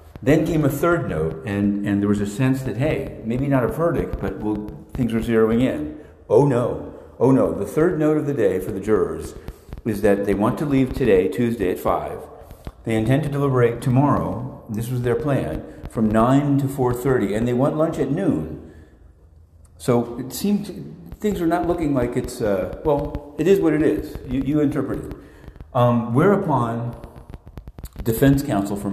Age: 50-69